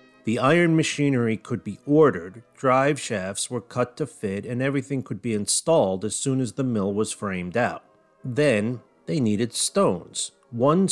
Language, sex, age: English, male, 40-59